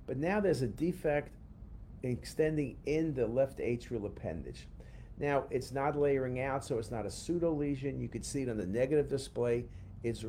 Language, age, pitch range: English, 50-69, 105-140 Hz